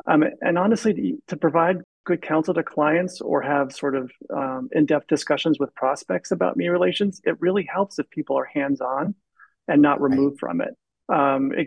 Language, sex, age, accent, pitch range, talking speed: English, male, 40-59, American, 140-170 Hz, 185 wpm